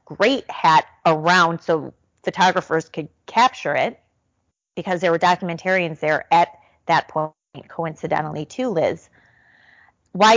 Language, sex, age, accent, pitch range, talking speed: English, female, 30-49, American, 160-195 Hz, 115 wpm